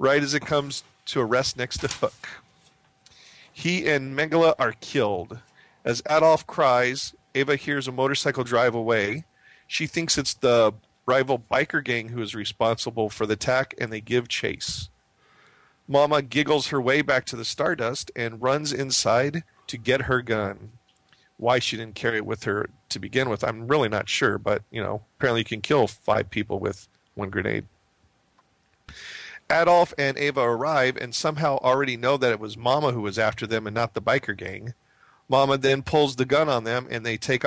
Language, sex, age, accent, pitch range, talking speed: English, male, 40-59, American, 115-140 Hz, 180 wpm